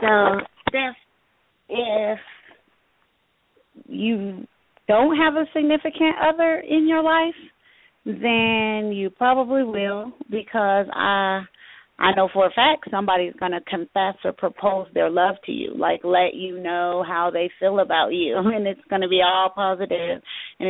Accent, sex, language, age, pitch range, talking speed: American, female, English, 40-59, 180-225 Hz, 140 wpm